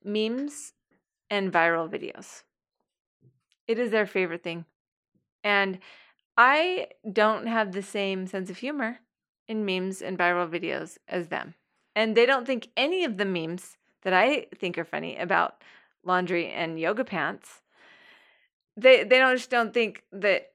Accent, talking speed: American, 145 wpm